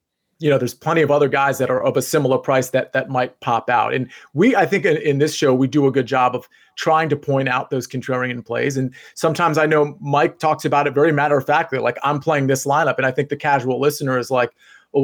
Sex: male